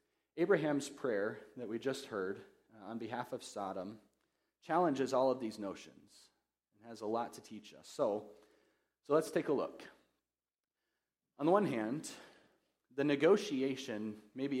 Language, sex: English, male